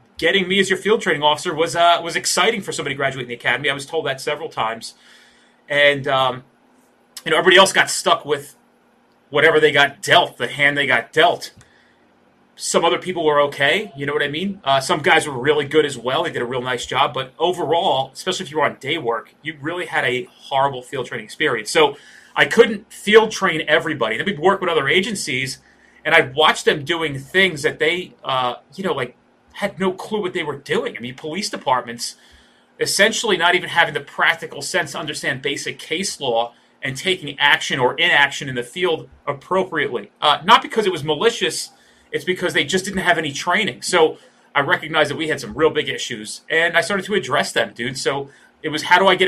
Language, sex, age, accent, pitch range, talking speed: English, male, 30-49, American, 135-180 Hz, 215 wpm